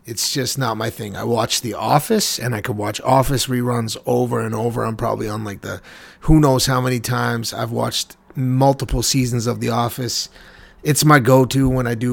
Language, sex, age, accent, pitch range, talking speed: English, male, 30-49, American, 115-140 Hz, 205 wpm